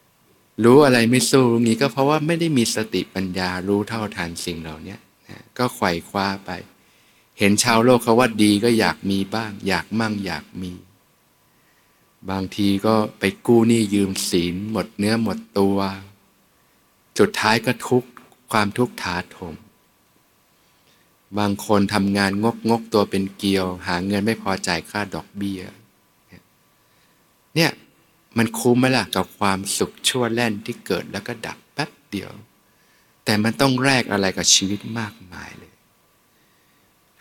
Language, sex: Thai, male